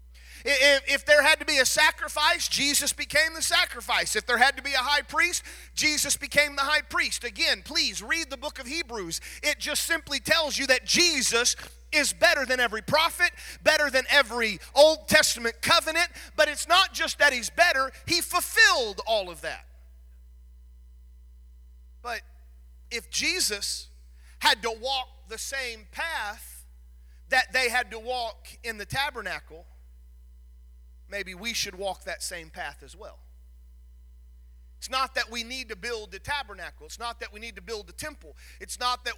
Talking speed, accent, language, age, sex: 165 wpm, American, English, 40-59, male